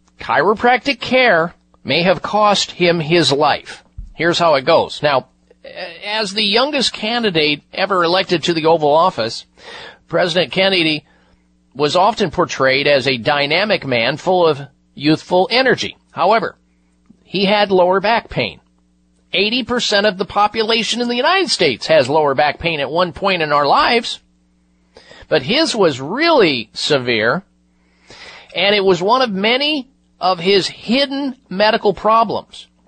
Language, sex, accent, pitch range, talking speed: English, male, American, 140-215 Hz, 140 wpm